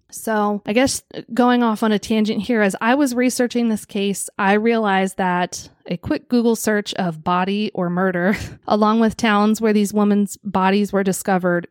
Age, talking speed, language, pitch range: 20-39, 180 wpm, English, 190-225 Hz